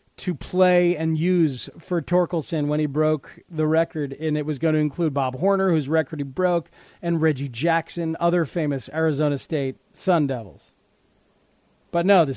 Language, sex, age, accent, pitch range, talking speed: English, male, 40-59, American, 145-195 Hz, 170 wpm